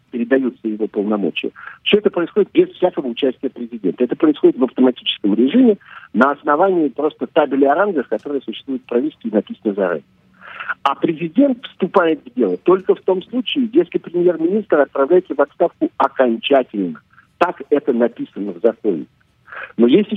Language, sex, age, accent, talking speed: Russian, male, 50-69, native, 145 wpm